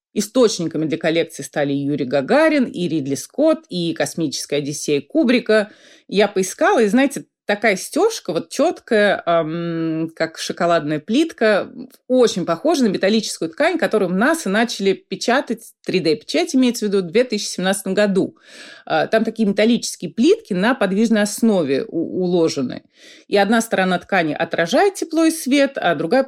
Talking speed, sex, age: 145 wpm, female, 30-49